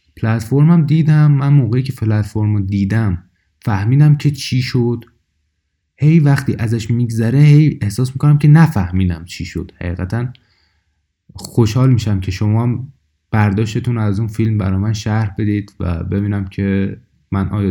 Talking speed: 140 wpm